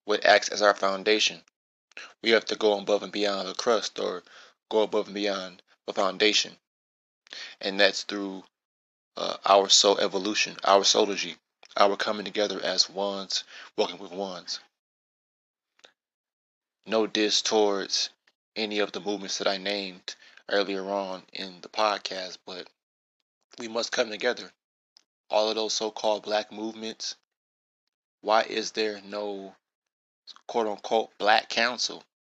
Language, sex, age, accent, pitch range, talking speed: English, male, 20-39, American, 95-110 Hz, 135 wpm